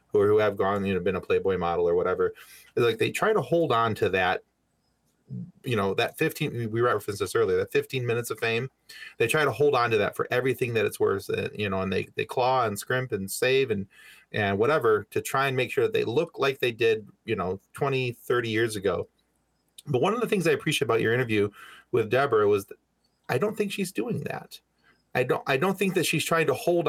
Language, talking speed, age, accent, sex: English, 235 wpm, 30-49, American, male